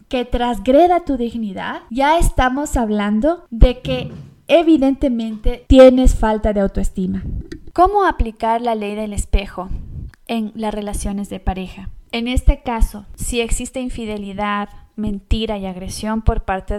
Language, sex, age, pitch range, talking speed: Spanish, female, 20-39, 215-265 Hz, 130 wpm